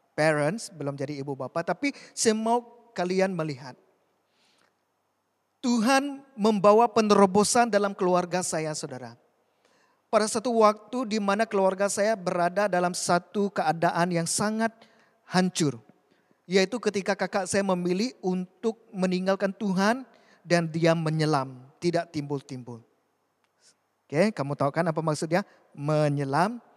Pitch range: 170-230 Hz